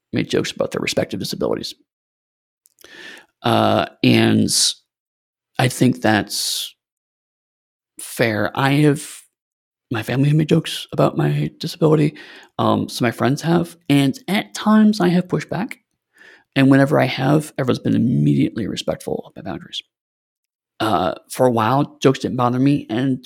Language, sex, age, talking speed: English, male, 30-49, 135 wpm